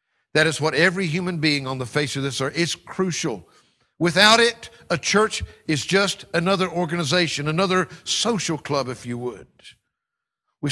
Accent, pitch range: American, 150-195 Hz